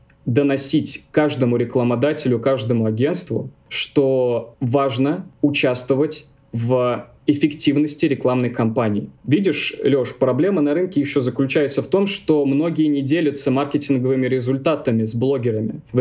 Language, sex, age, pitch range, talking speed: Russian, male, 20-39, 125-150 Hz, 110 wpm